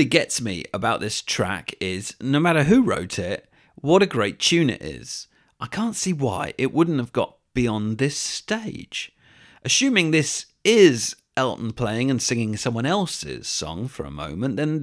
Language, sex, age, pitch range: English, male, 40-59, 105-145 Hz